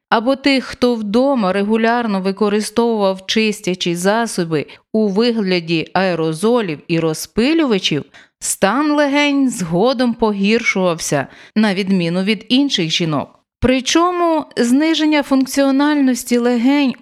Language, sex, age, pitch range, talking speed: Ukrainian, female, 30-49, 185-265 Hz, 90 wpm